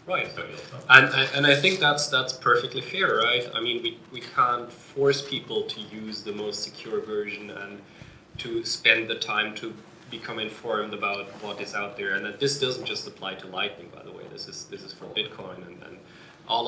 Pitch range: 110-165 Hz